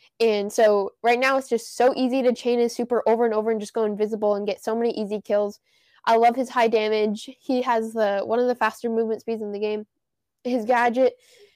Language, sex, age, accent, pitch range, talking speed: English, female, 10-29, American, 215-255 Hz, 230 wpm